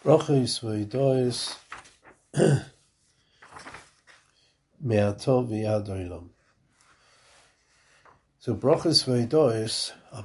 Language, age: English, 50-69